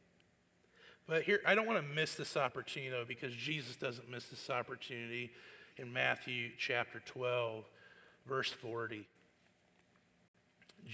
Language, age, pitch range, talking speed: English, 40-59, 120-170 Hz, 120 wpm